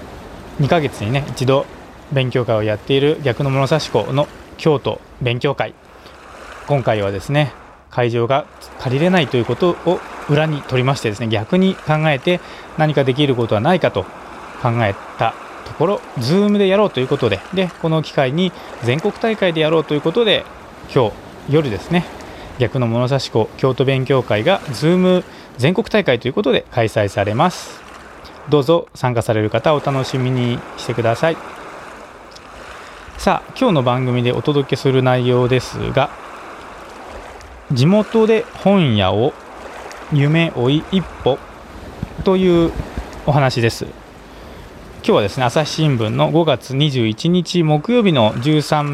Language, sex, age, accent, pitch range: Japanese, male, 20-39, native, 120-160 Hz